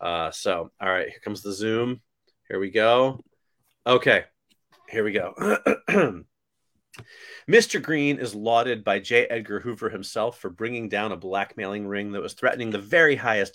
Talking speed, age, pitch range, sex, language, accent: 160 wpm, 30-49, 110-145 Hz, male, English, American